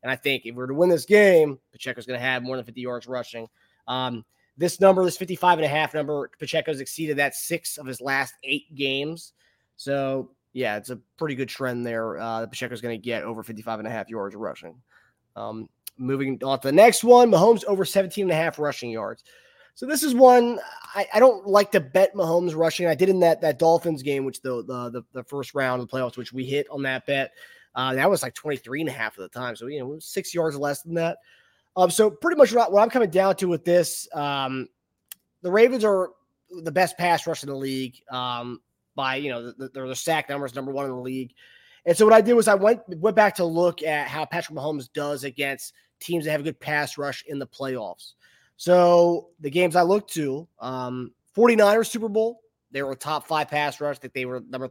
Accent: American